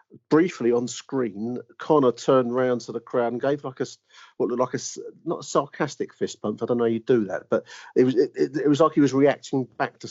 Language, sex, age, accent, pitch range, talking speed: English, male, 40-59, British, 110-130 Hz, 250 wpm